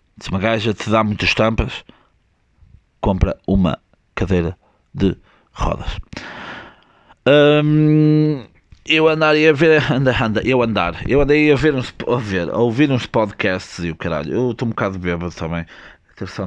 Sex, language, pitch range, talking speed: male, Portuguese, 90-120 Hz, 155 wpm